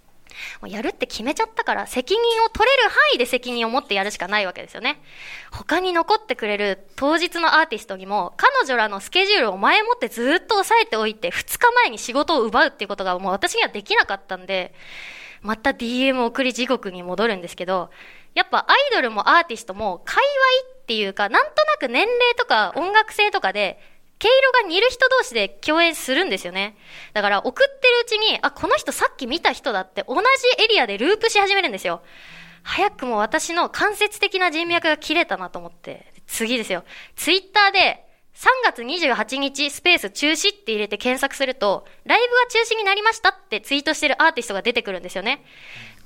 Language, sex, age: Japanese, female, 20-39